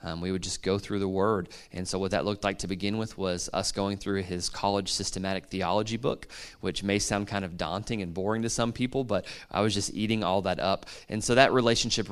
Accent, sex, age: American, male, 20-39